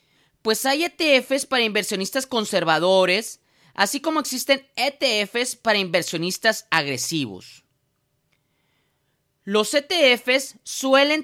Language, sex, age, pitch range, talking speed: Spanish, male, 30-49, 180-260 Hz, 85 wpm